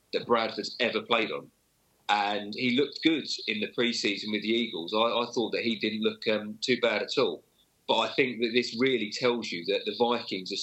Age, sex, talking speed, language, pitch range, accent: 30-49, male, 220 wpm, English, 105-120 Hz, British